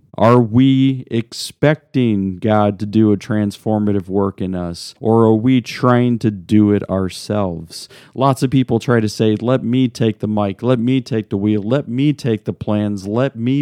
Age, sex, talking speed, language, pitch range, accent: 40-59, male, 185 wpm, English, 105-135 Hz, American